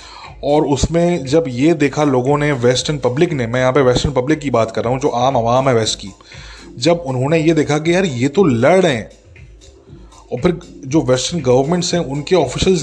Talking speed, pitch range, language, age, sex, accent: 210 wpm, 130-170 Hz, English, 20-39, male, Indian